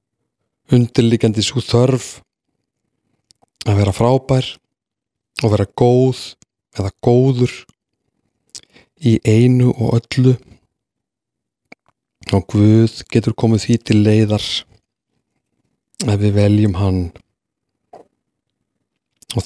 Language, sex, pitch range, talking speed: English, male, 110-130 Hz, 85 wpm